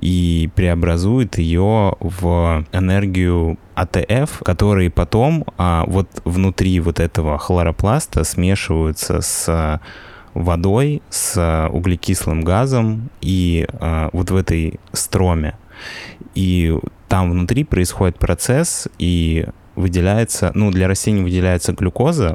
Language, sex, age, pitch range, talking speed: Russian, male, 20-39, 85-100 Hz, 95 wpm